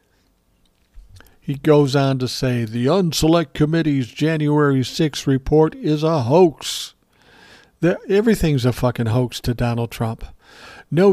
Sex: male